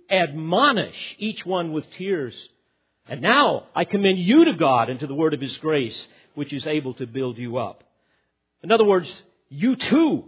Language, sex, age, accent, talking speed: English, male, 50-69, American, 180 wpm